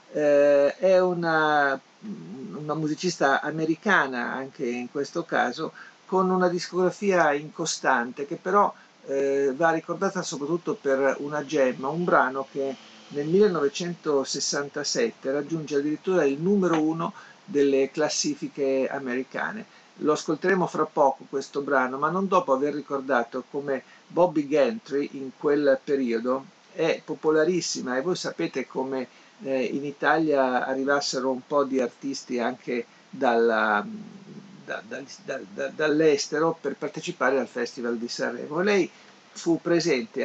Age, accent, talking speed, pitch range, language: 50-69, native, 120 wpm, 135-170 Hz, Italian